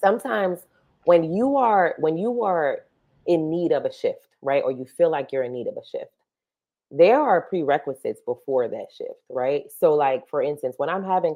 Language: English